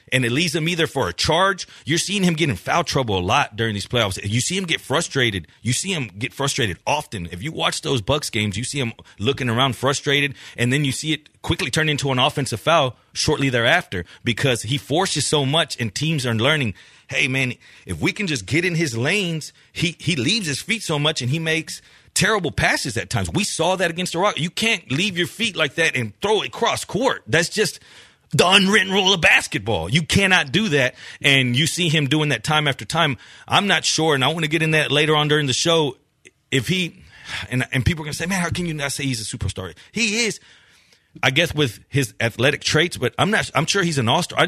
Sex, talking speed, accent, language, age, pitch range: male, 235 wpm, American, English, 30-49, 130-170 Hz